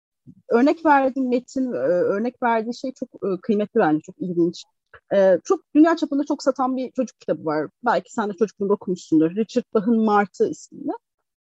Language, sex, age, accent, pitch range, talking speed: Turkish, female, 40-59, native, 215-295 Hz, 155 wpm